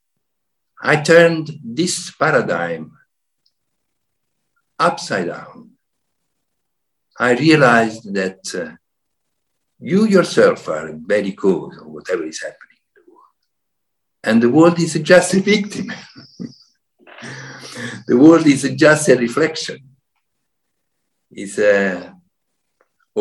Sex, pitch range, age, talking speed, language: male, 110-175 Hz, 60-79, 95 wpm, English